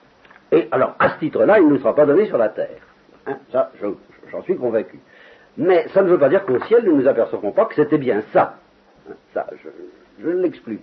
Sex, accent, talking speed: male, French, 240 wpm